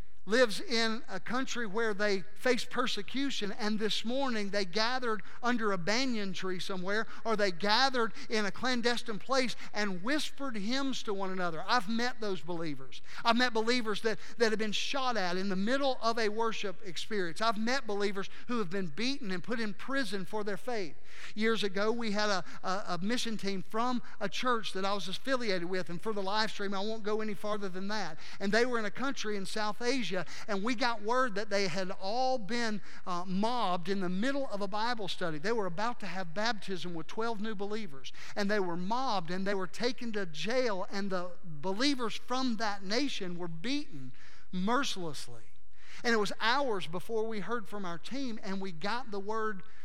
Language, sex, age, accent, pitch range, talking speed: English, male, 50-69, American, 185-230 Hz, 200 wpm